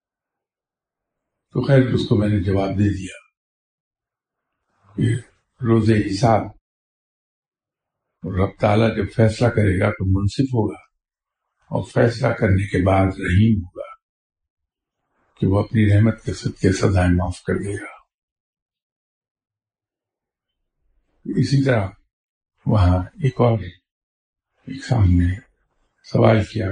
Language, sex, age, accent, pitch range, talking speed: English, male, 60-79, Indian, 95-125 Hz, 105 wpm